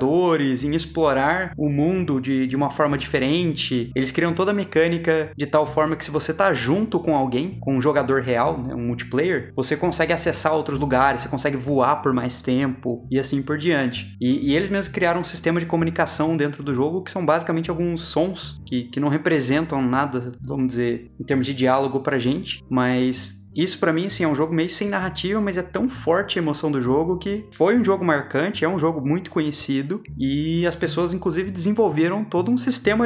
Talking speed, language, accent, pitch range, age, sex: 205 wpm, Portuguese, Brazilian, 135-170 Hz, 20-39, male